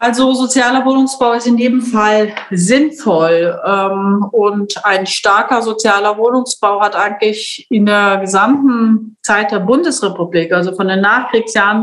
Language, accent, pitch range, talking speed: German, German, 195-220 Hz, 125 wpm